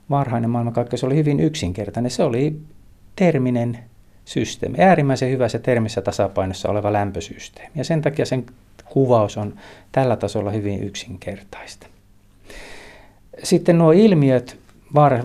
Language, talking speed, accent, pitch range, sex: Finnish, 115 wpm, native, 100-135 Hz, male